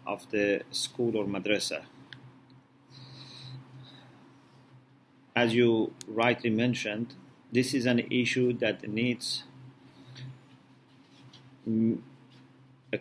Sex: male